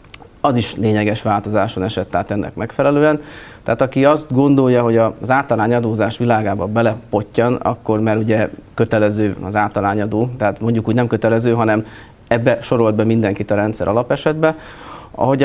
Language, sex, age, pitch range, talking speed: Hungarian, male, 30-49, 110-130 Hz, 145 wpm